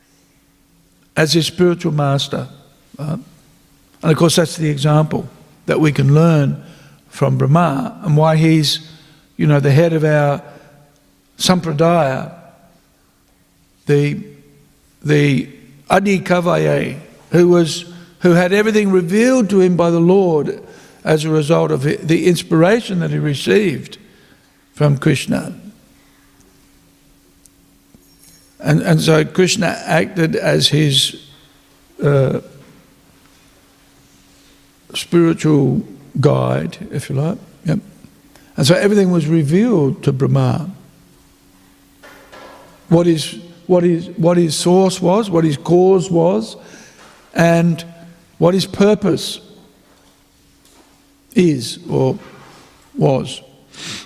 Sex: male